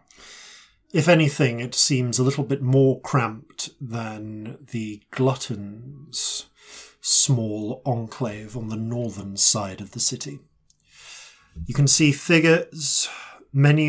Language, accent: English, British